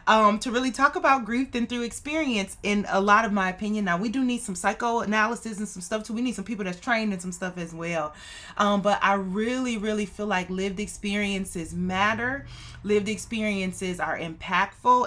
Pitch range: 190-240 Hz